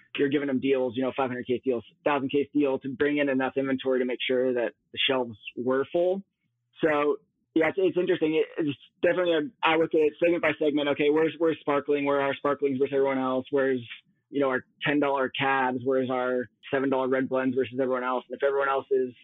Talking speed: 210 wpm